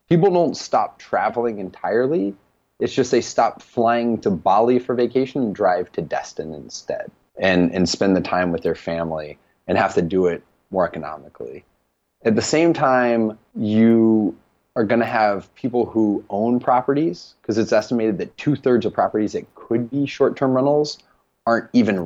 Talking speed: 165 wpm